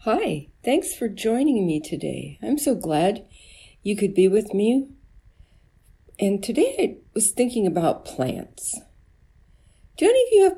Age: 50-69